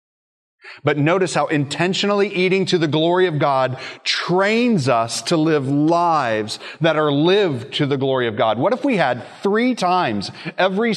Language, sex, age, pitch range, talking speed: English, male, 30-49, 135-190 Hz, 165 wpm